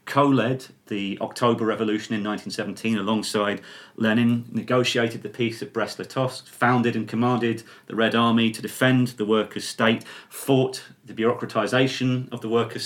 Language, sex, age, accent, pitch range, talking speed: English, male, 30-49, British, 105-125 Hz, 140 wpm